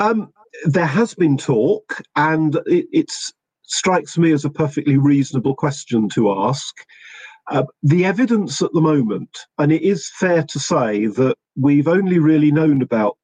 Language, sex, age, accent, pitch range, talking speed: English, male, 50-69, British, 120-155 Hz, 155 wpm